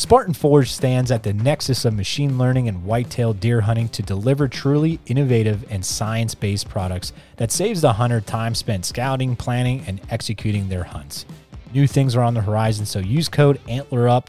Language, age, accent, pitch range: English, 30-49, American, 100-130 Hz